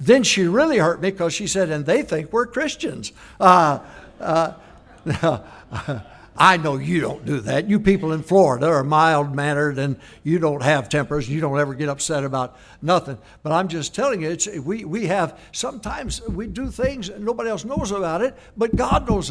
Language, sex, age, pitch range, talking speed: English, male, 60-79, 155-220 Hz, 185 wpm